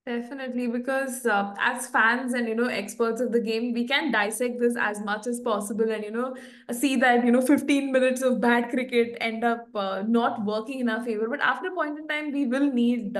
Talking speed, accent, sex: 225 wpm, Indian, female